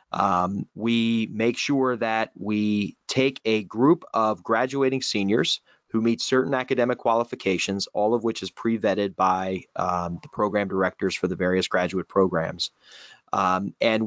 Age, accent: 30-49, American